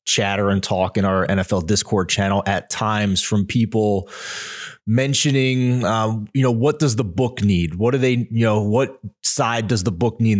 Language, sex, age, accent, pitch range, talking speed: English, male, 20-39, American, 95-115 Hz, 185 wpm